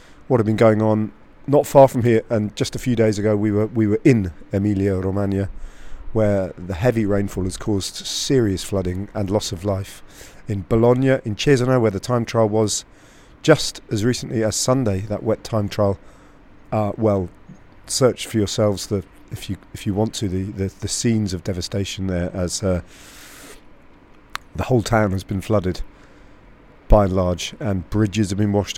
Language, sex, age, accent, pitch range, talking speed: English, male, 40-59, British, 95-120 Hz, 180 wpm